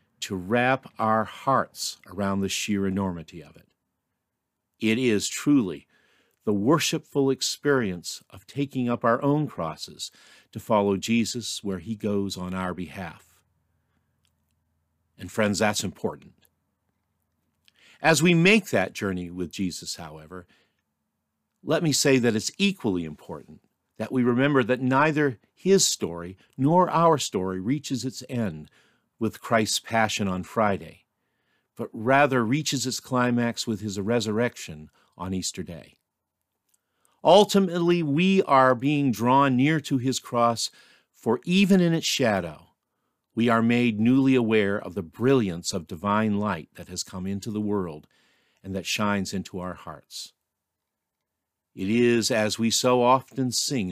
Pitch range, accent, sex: 95-130 Hz, American, male